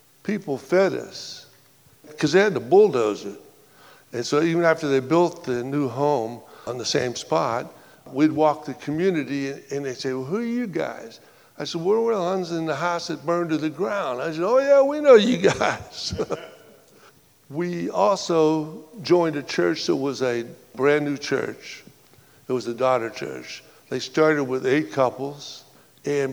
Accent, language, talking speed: American, English, 180 wpm